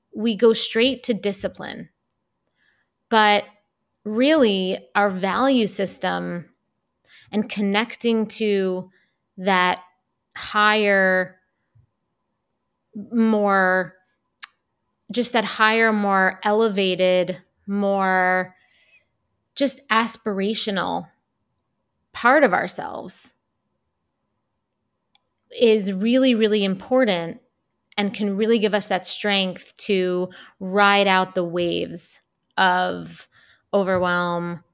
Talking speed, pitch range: 80 wpm, 180-210 Hz